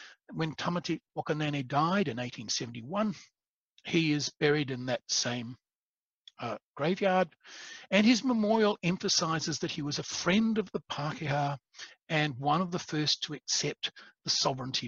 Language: English